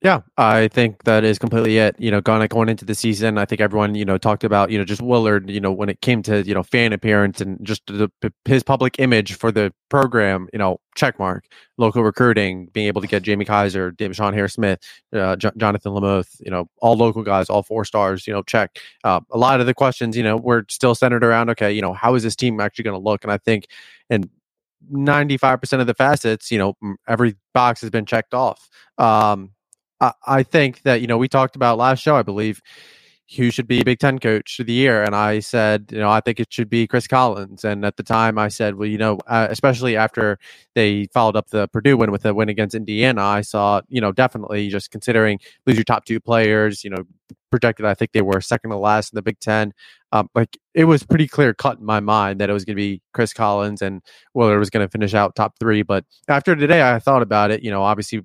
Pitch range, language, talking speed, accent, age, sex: 105-120 Hz, English, 240 wpm, American, 20-39, male